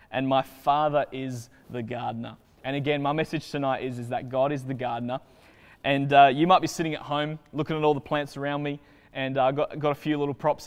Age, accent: 20-39, Australian